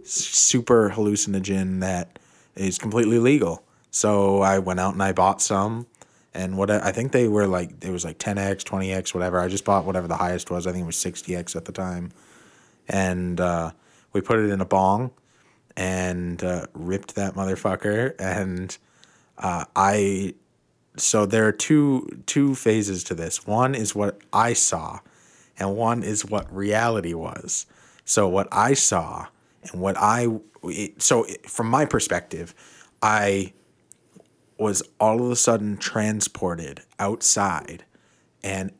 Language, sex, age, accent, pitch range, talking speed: English, male, 20-39, American, 95-110 Hz, 150 wpm